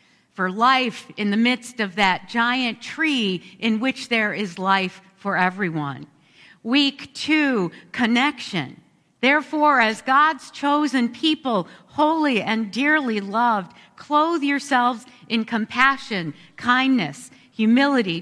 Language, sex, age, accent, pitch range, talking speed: English, female, 50-69, American, 210-275 Hz, 110 wpm